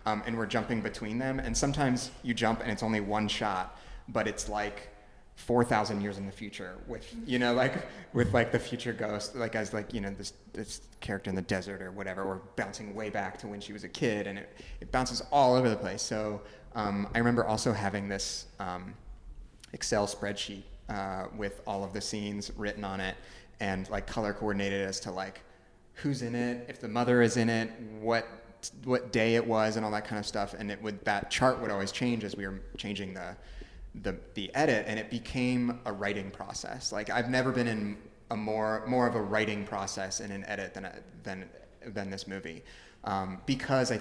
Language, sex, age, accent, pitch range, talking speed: English, male, 30-49, American, 100-115 Hz, 210 wpm